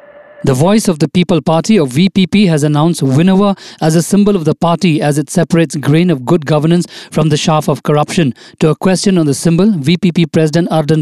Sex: male